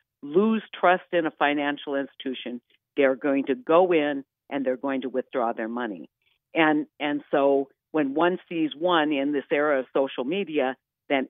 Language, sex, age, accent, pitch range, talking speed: English, female, 50-69, American, 135-160 Hz, 170 wpm